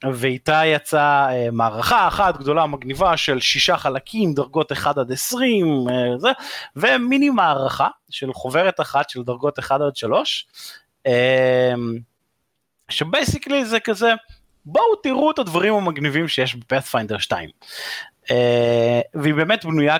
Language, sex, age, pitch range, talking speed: Hebrew, male, 30-49, 120-155 Hz, 115 wpm